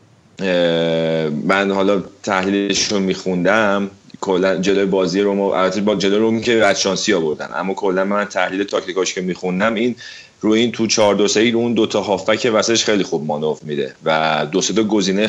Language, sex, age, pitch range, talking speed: Persian, male, 30-49, 85-105 Hz, 170 wpm